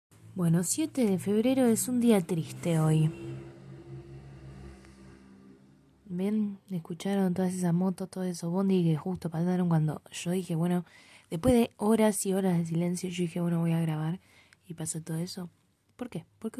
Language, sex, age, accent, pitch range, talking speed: Spanish, female, 20-39, Argentinian, 155-205 Hz, 160 wpm